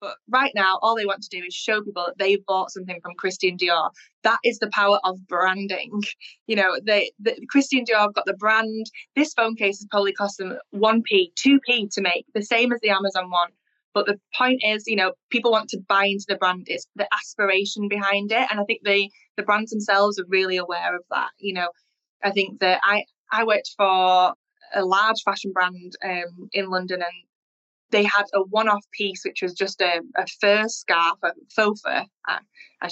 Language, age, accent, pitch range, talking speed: English, 20-39, British, 185-215 Hz, 210 wpm